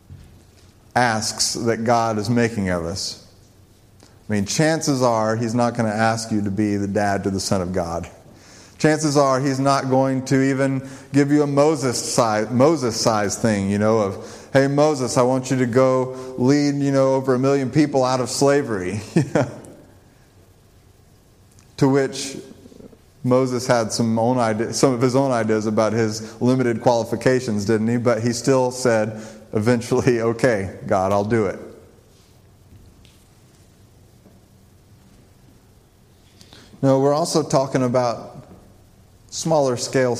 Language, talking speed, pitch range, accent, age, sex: English, 145 wpm, 105-130 Hz, American, 30-49, male